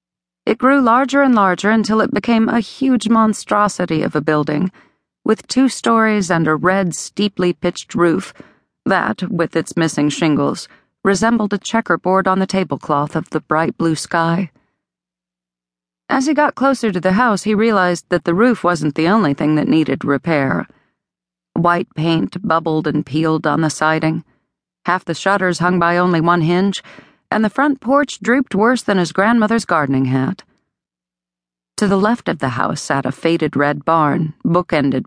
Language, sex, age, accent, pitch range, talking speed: English, female, 40-59, American, 150-205 Hz, 165 wpm